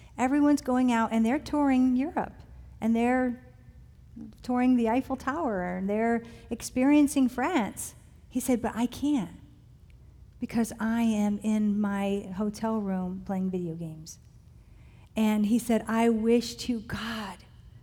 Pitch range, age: 195-235 Hz, 50-69